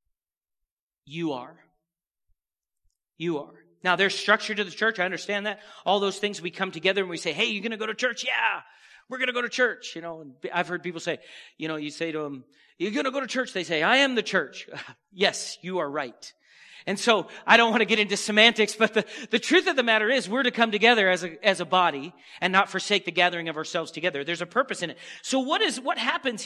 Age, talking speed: 40-59, 245 wpm